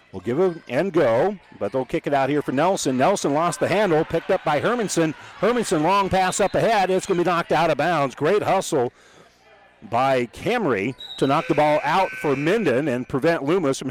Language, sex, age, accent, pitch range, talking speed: English, male, 50-69, American, 125-170 Hz, 210 wpm